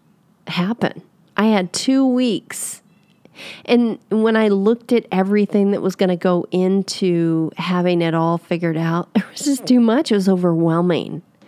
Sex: female